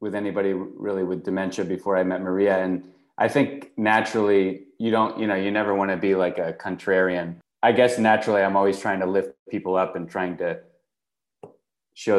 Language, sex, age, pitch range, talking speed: English, male, 20-39, 85-100 Hz, 190 wpm